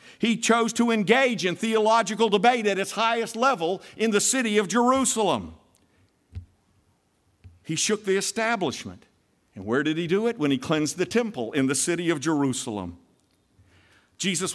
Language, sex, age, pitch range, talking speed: English, male, 50-69, 160-230 Hz, 155 wpm